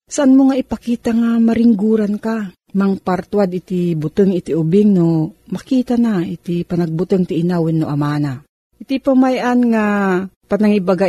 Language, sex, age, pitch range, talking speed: Filipino, female, 40-59, 170-225 Hz, 130 wpm